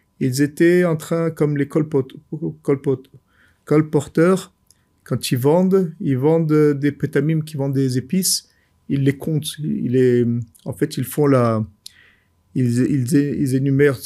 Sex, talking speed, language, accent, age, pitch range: male, 145 wpm, French, French, 50-69, 120-160 Hz